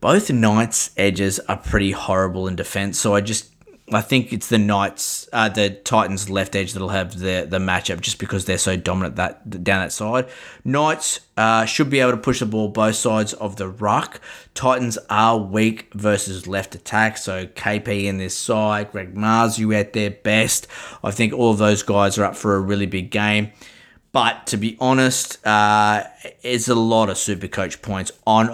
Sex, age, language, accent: male, 20-39, English, Australian